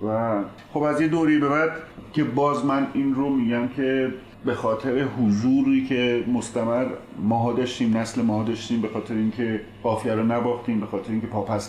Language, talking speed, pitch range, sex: Persian, 175 wpm, 110-145 Hz, male